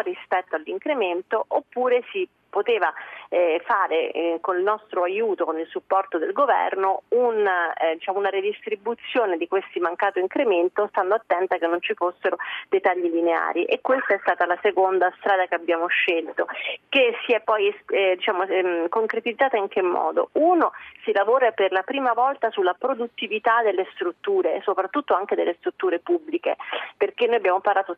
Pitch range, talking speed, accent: 180-295 Hz, 165 wpm, native